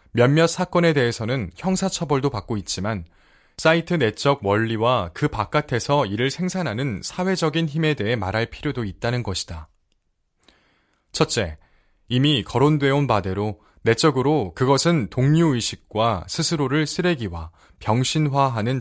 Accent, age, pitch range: native, 20-39, 100-145 Hz